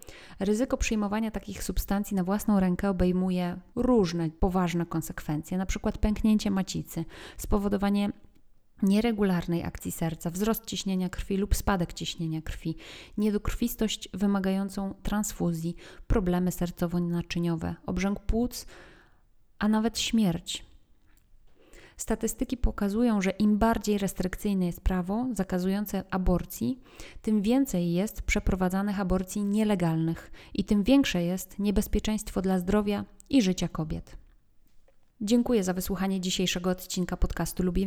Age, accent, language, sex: 30-49, native, Polish, female